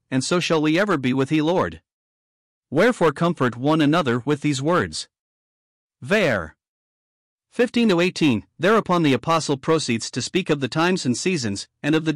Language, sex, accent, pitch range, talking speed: English, male, American, 130-165 Hz, 160 wpm